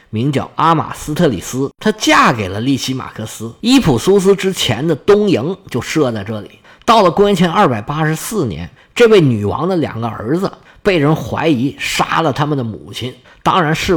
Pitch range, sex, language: 125-200 Hz, male, Chinese